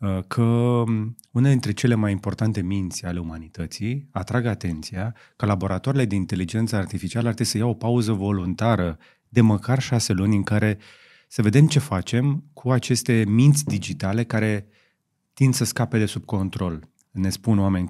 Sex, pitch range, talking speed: male, 95-120 Hz, 160 wpm